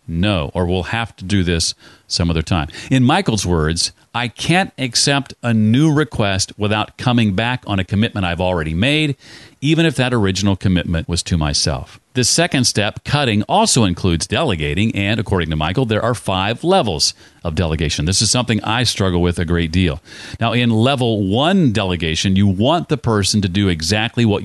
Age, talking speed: 40-59, 185 wpm